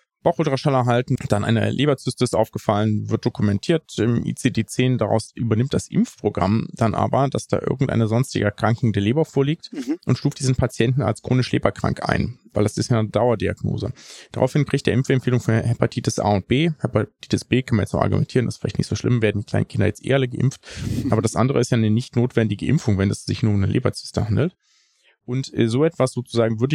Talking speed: 205 wpm